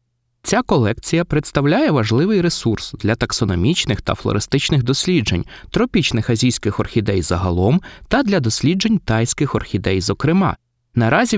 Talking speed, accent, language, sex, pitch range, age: 110 wpm, native, Ukrainian, male, 110-160 Hz, 20-39